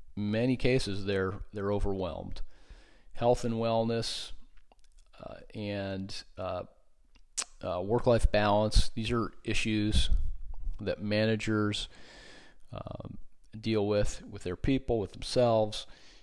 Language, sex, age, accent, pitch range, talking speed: English, male, 40-59, American, 95-120 Hz, 105 wpm